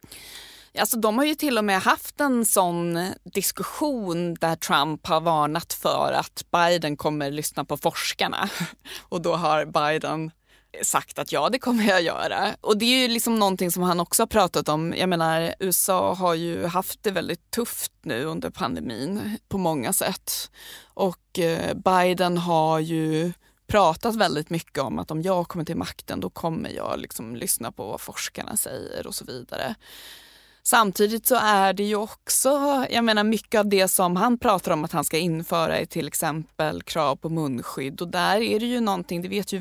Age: 20-39